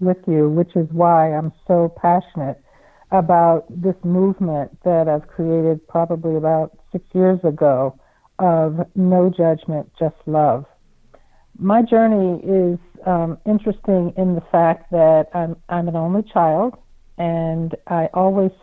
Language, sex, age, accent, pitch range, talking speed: English, female, 60-79, American, 165-190 Hz, 130 wpm